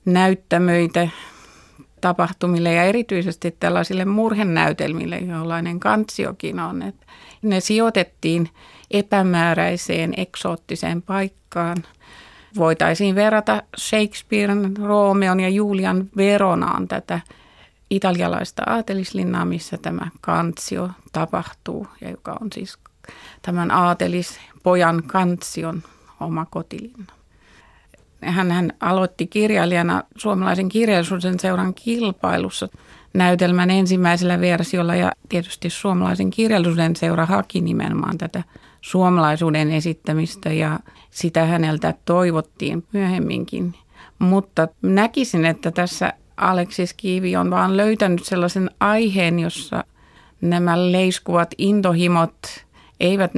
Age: 30-49